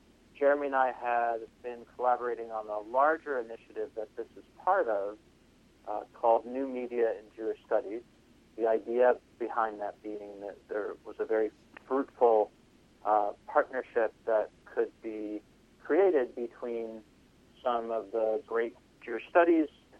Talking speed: 140 wpm